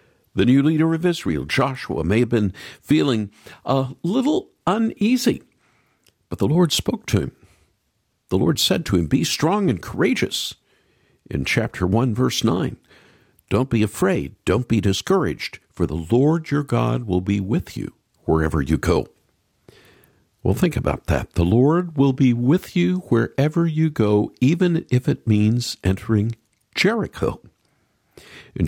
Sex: male